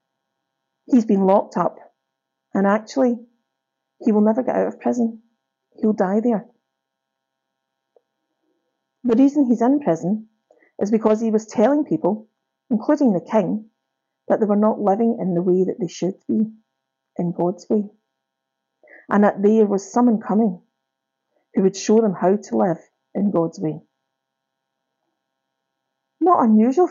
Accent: British